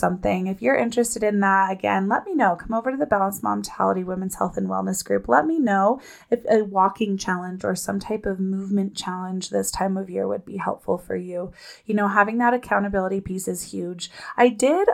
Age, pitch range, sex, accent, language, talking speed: 20-39, 180-235 Hz, female, American, English, 215 wpm